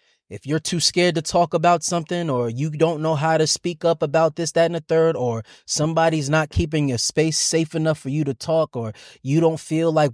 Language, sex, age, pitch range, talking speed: English, male, 20-39, 125-160 Hz, 230 wpm